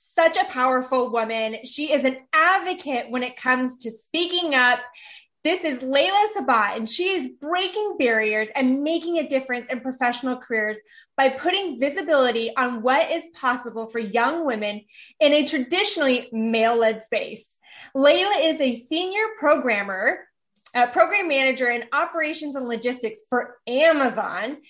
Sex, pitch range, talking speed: female, 245-330 Hz, 145 wpm